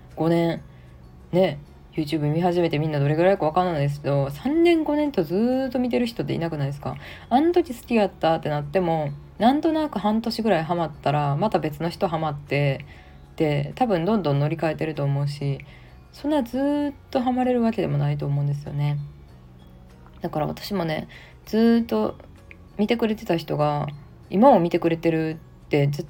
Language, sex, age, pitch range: Japanese, female, 20-39, 145-210 Hz